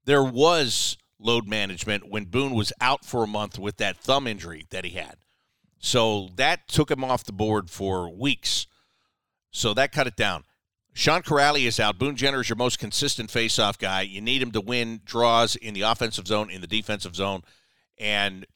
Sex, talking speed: male, 190 wpm